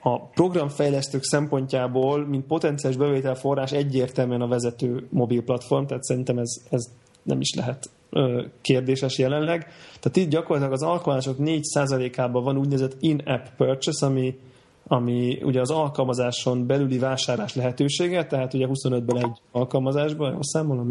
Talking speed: 125 wpm